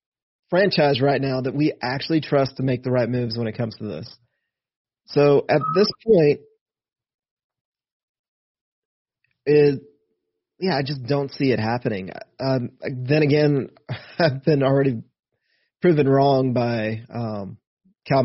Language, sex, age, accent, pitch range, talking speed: English, male, 30-49, American, 120-145 Hz, 130 wpm